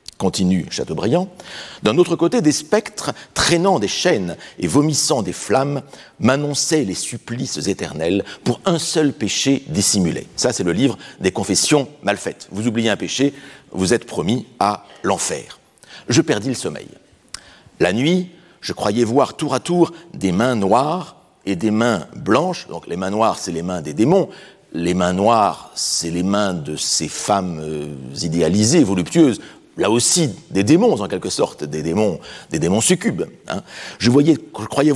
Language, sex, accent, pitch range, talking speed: French, male, French, 100-150 Hz, 165 wpm